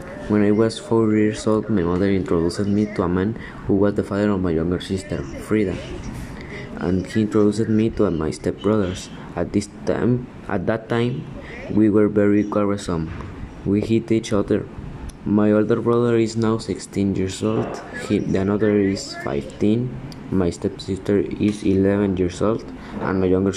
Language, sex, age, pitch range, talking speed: Spanish, male, 20-39, 95-110 Hz, 165 wpm